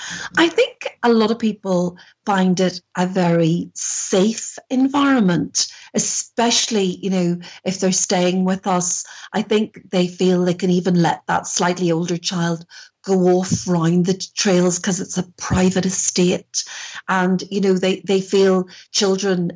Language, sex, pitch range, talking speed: English, female, 175-205 Hz, 150 wpm